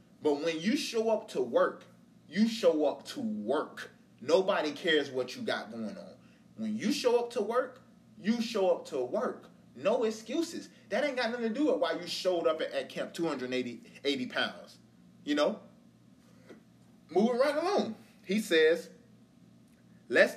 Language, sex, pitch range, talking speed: English, male, 175-255 Hz, 165 wpm